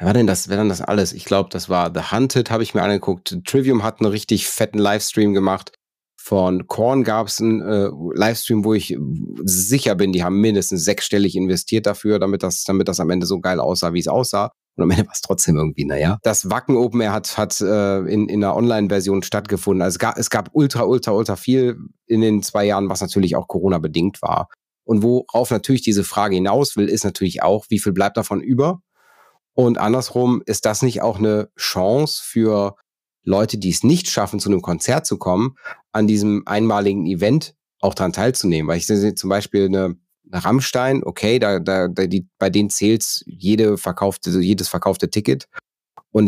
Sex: male